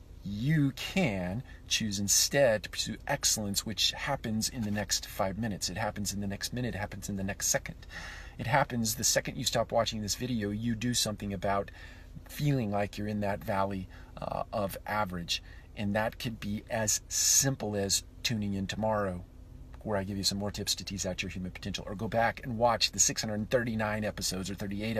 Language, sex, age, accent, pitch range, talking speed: English, male, 40-59, American, 90-110 Hz, 195 wpm